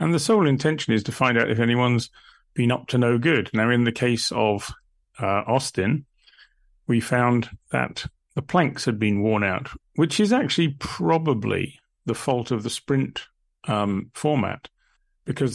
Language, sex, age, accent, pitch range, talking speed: English, male, 40-59, British, 105-130 Hz, 165 wpm